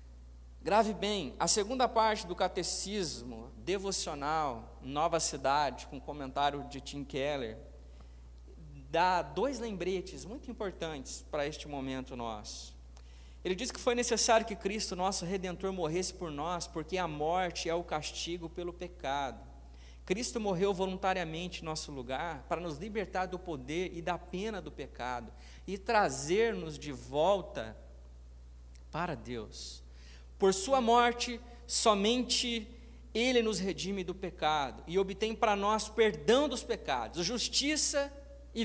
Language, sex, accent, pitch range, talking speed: Portuguese, male, Brazilian, 140-220 Hz, 130 wpm